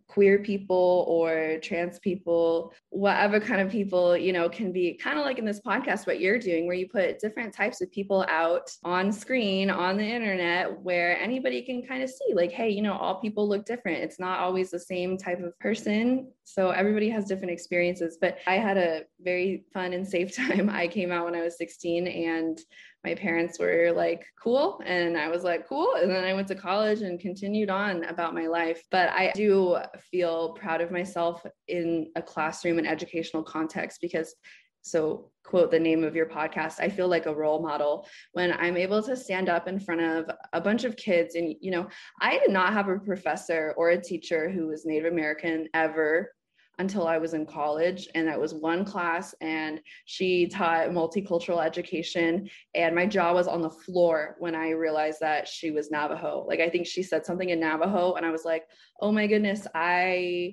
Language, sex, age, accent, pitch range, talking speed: English, female, 20-39, American, 165-195 Hz, 200 wpm